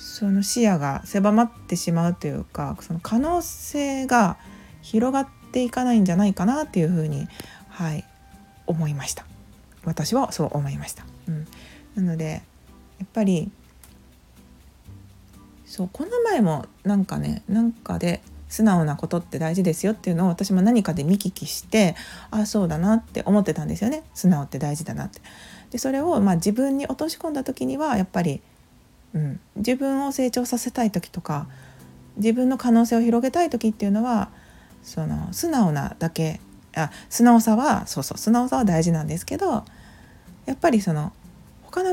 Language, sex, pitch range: Japanese, female, 160-235 Hz